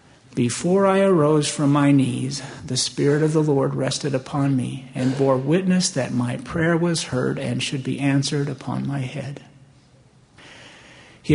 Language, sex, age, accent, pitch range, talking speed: English, male, 50-69, American, 130-155 Hz, 160 wpm